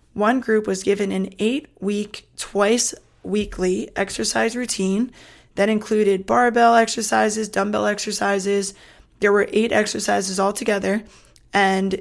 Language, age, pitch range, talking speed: English, 20-39, 190-220 Hz, 105 wpm